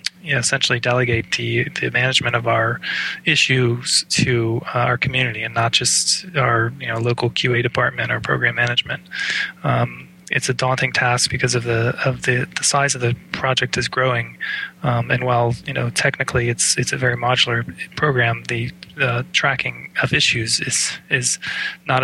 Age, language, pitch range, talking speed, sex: 20-39, English, 120-130 Hz, 170 wpm, male